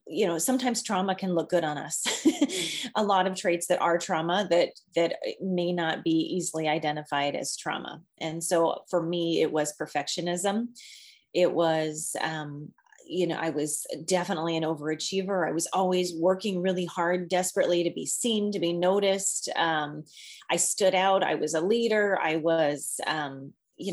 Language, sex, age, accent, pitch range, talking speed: English, female, 30-49, American, 160-200 Hz, 170 wpm